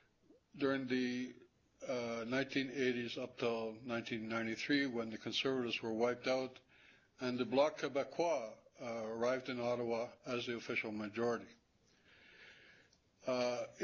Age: 60-79